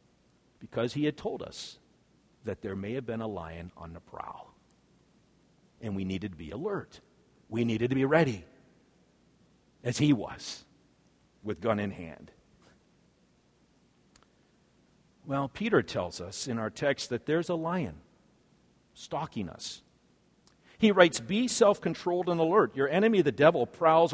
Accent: American